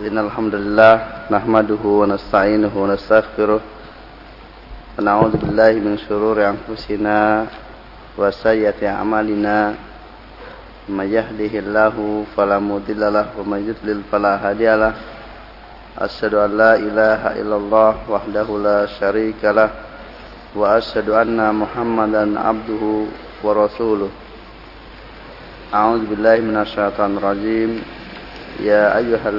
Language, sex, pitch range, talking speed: English, male, 105-110 Hz, 35 wpm